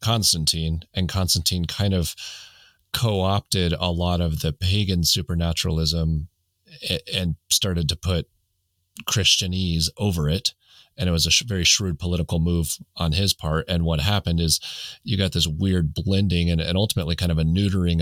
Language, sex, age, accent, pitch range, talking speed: English, male, 30-49, American, 80-95 Hz, 160 wpm